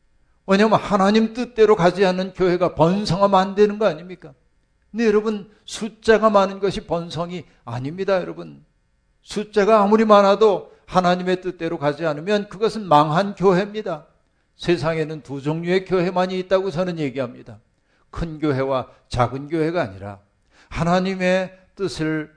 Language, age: Korean, 60-79